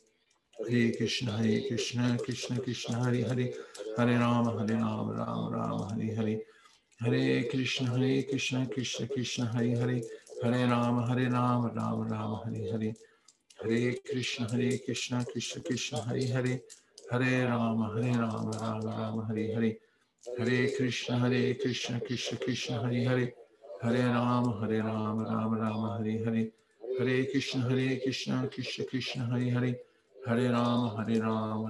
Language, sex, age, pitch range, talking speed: English, male, 50-69, 110-125 Hz, 55 wpm